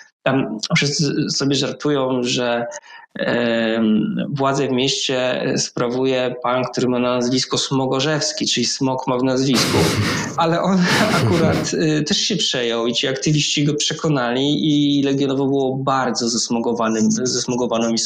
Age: 20-39